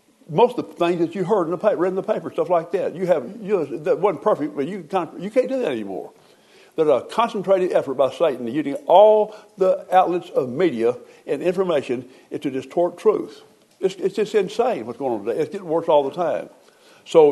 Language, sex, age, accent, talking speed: English, male, 60-79, American, 220 wpm